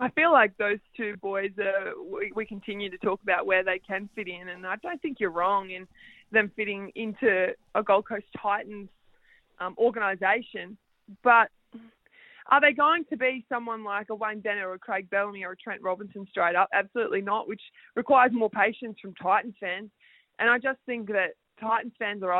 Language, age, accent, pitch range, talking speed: English, 20-39, Australian, 200-250 Hz, 190 wpm